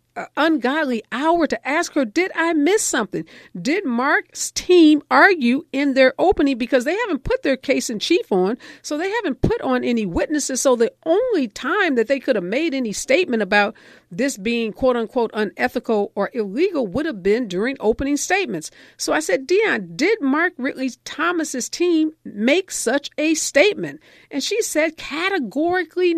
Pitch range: 210-315 Hz